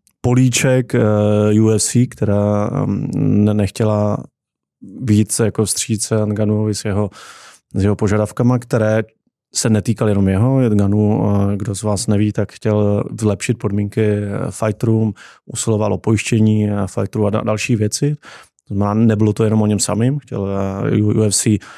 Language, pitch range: Czech, 105-115 Hz